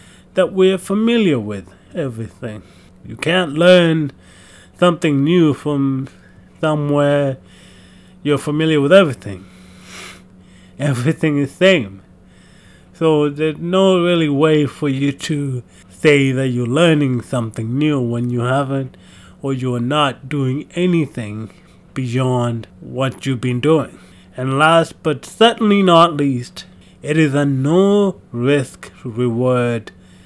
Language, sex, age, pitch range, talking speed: English, male, 30-49, 100-160 Hz, 115 wpm